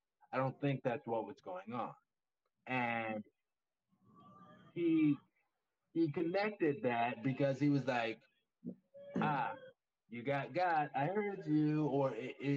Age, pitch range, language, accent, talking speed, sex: 20-39, 125-155 Hz, English, American, 120 wpm, male